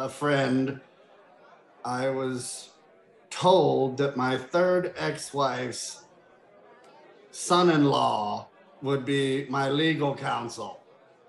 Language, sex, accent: English, male, American